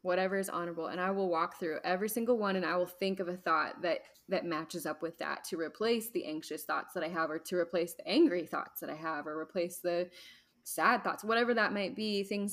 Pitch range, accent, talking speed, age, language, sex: 175-210 Hz, American, 245 wpm, 10-29, English, female